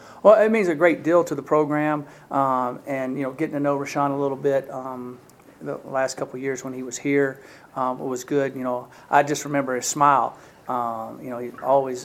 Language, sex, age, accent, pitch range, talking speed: English, male, 40-59, American, 125-145 Hz, 220 wpm